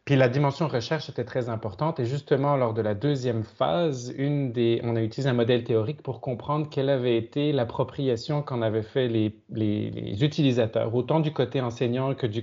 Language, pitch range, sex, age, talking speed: French, 115-145 Hz, male, 30-49, 200 wpm